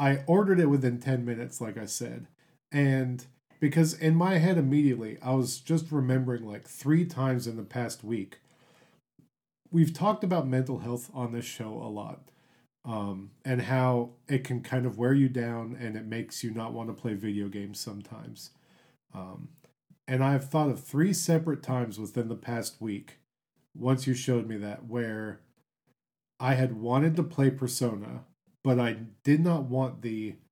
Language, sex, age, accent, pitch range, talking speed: English, male, 40-59, American, 115-145 Hz, 170 wpm